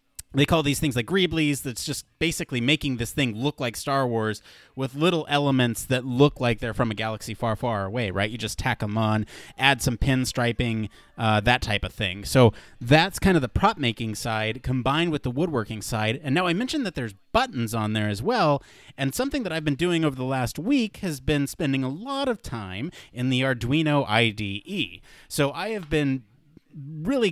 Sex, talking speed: male, 200 wpm